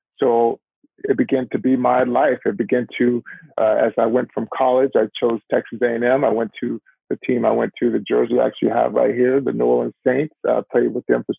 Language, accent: English, American